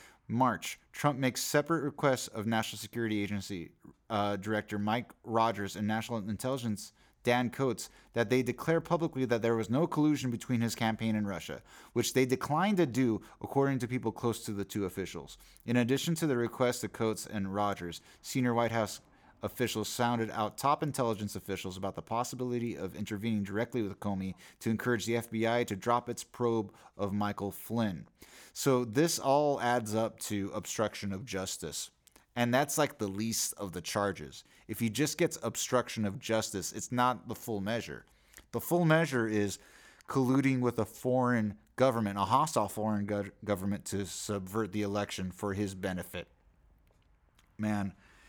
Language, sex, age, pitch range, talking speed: English, male, 30-49, 100-130 Hz, 165 wpm